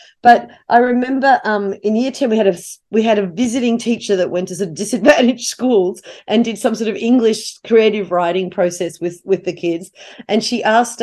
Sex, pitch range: female, 190-245 Hz